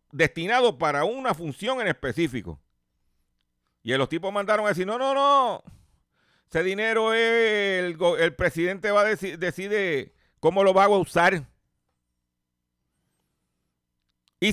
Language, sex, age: Spanish, male, 50-69